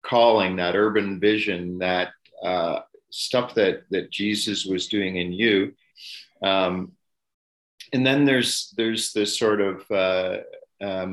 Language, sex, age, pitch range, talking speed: English, male, 50-69, 90-105 Hz, 130 wpm